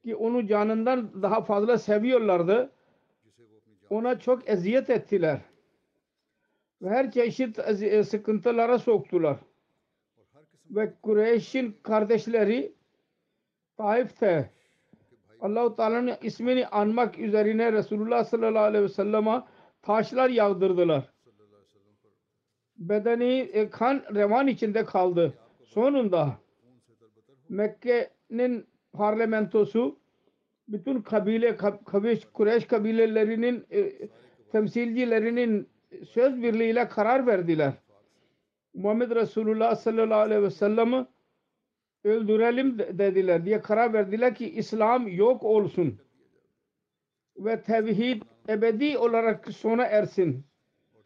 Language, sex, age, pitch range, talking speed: Turkish, male, 50-69, 205-240 Hz, 80 wpm